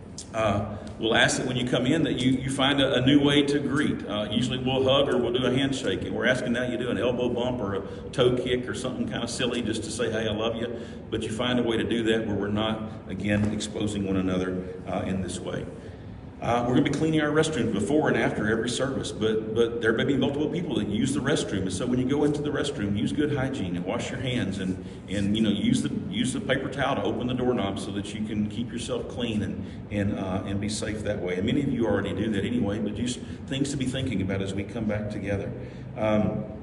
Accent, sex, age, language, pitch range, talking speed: American, male, 40-59, English, 105-125 Hz, 260 wpm